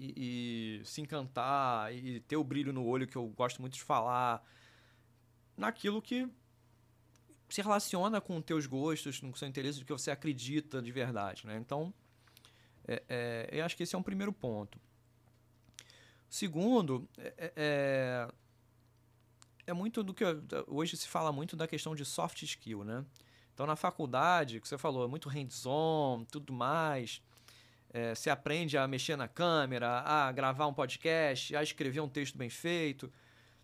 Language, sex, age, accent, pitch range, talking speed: Portuguese, male, 20-39, Brazilian, 120-160 Hz, 160 wpm